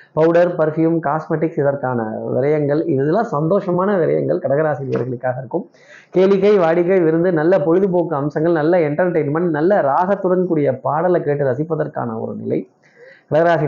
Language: Tamil